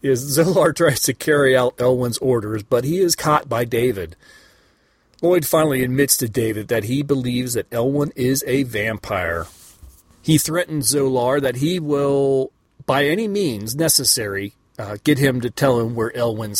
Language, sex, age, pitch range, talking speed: English, male, 40-59, 115-150 Hz, 165 wpm